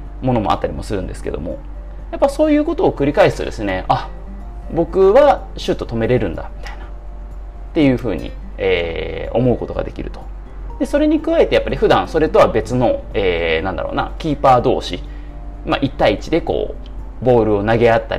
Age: 30-49